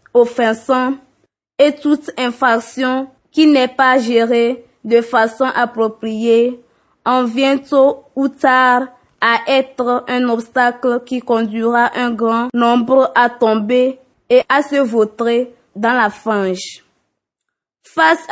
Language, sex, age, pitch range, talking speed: French, female, 20-39, 230-260 Hz, 115 wpm